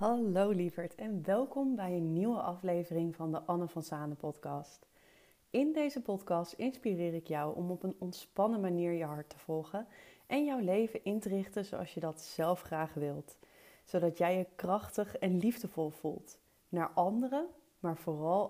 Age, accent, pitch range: 30-49, Dutch, 170-210 Hz